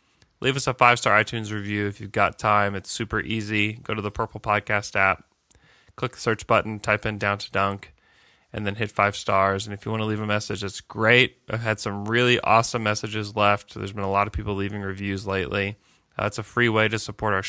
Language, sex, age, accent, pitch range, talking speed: English, male, 20-39, American, 105-120 Hz, 230 wpm